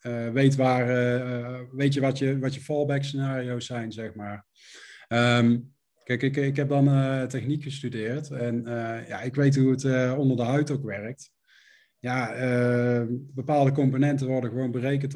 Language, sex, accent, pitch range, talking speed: Dutch, male, Dutch, 120-140 Hz, 180 wpm